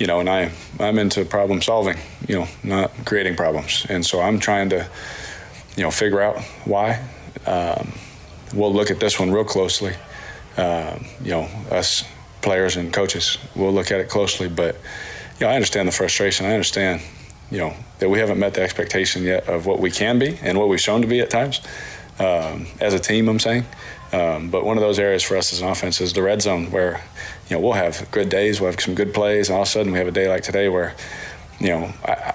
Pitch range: 90-105 Hz